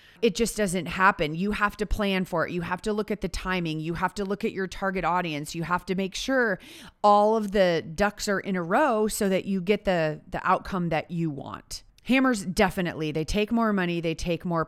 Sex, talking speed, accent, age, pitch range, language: female, 235 wpm, American, 30-49, 170-225 Hz, English